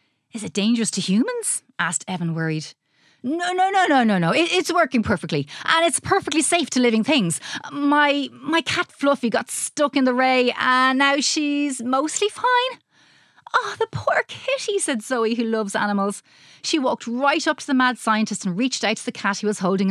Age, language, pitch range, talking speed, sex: 30-49, English, 195-300 Hz, 195 wpm, female